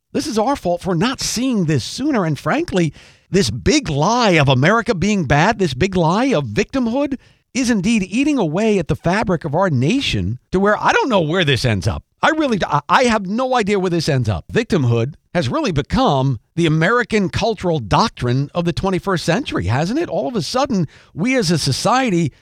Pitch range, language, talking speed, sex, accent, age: 150-230 Hz, English, 200 wpm, male, American, 50-69